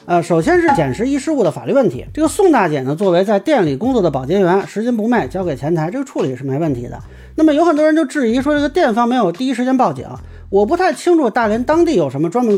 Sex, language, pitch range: male, Chinese, 170-260 Hz